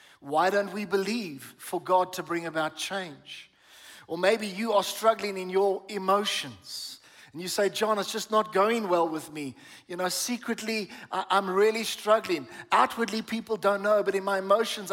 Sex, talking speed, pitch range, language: male, 175 wpm, 180-220 Hz, English